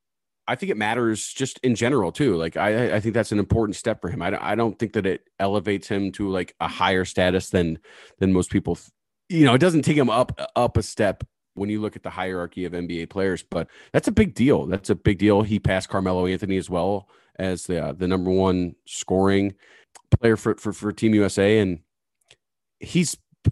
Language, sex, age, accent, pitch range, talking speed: English, male, 30-49, American, 90-110 Hz, 220 wpm